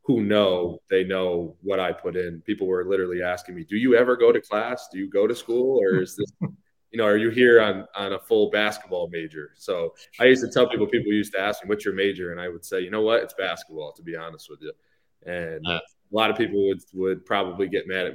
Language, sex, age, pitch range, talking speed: English, male, 20-39, 85-120 Hz, 255 wpm